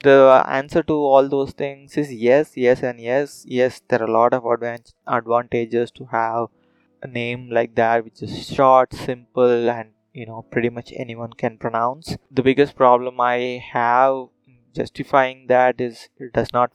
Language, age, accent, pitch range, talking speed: English, 20-39, Indian, 115-130 Hz, 170 wpm